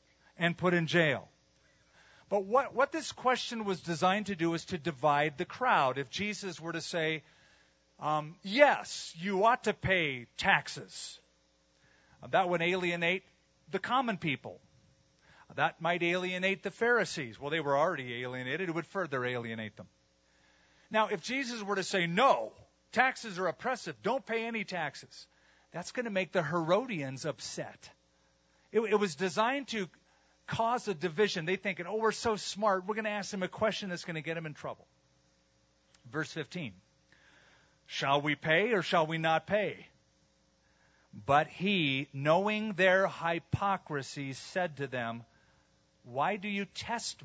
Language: English